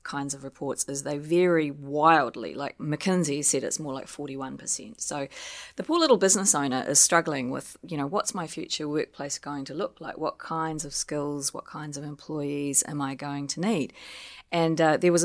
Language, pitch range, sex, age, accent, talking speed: English, 145-170 Hz, female, 30-49, Australian, 195 wpm